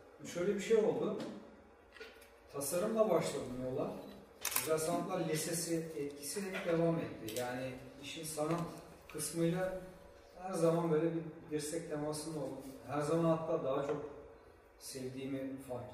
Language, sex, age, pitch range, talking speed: Turkish, male, 40-59, 135-165 Hz, 110 wpm